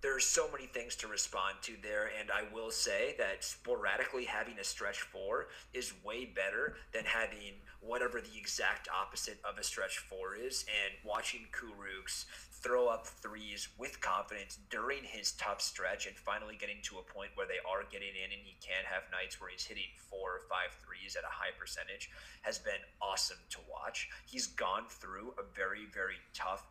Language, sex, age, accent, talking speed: English, male, 30-49, American, 190 wpm